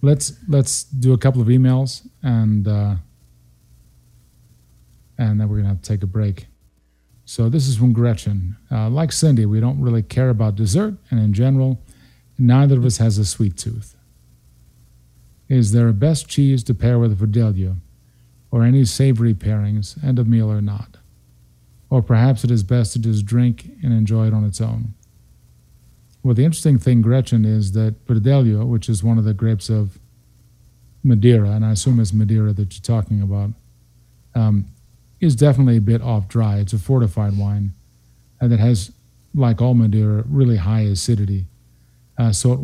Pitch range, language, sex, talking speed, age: 105-125 Hz, English, male, 175 wpm, 40-59